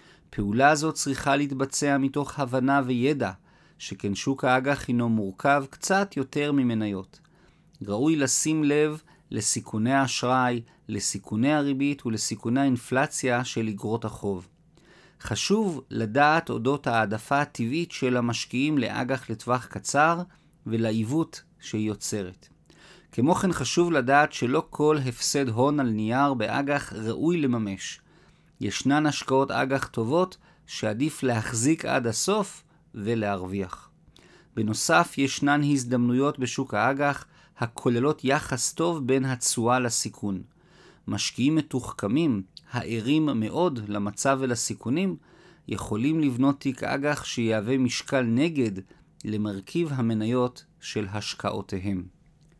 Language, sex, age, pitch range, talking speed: Hebrew, male, 40-59, 115-150 Hz, 105 wpm